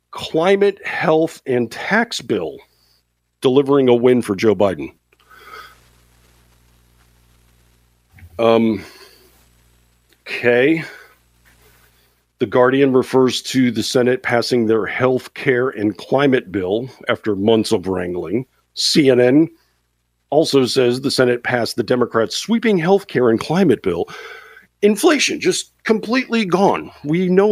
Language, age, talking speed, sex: English, 50-69, 110 wpm, male